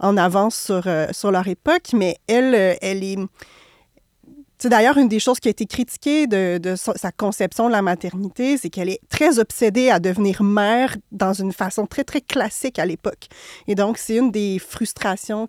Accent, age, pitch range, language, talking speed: Canadian, 30-49, 190-245 Hz, French, 195 wpm